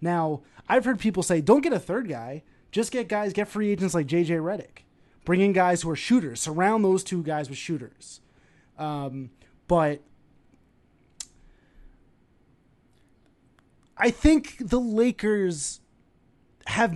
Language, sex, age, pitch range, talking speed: English, male, 30-49, 145-200 Hz, 135 wpm